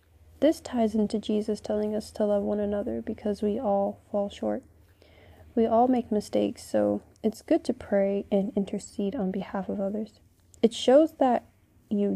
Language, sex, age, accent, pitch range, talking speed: English, female, 20-39, American, 135-215 Hz, 170 wpm